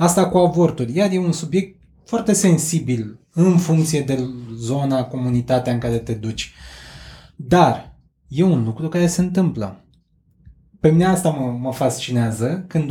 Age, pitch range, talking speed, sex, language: 20-39, 125-165 Hz, 150 wpm, male, Romanian